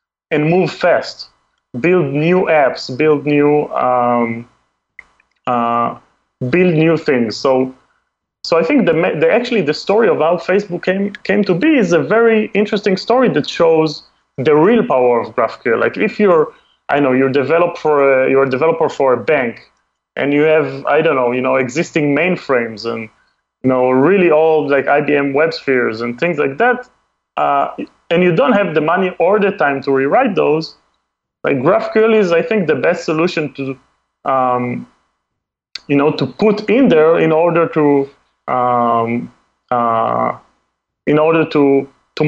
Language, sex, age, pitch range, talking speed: English, male, 20-39, 130-175 Hz, 165 wpm